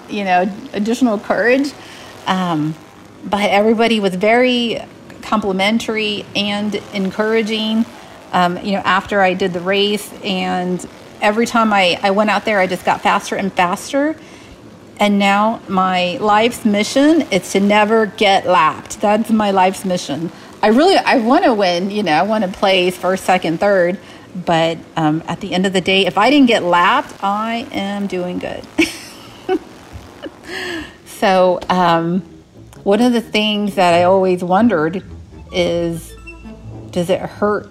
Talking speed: 150 wpm